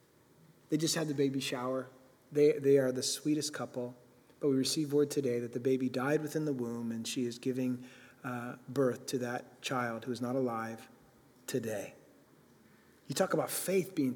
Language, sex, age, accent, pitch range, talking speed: English, male, 30-49, American, 130-175 Hz, 180 wpm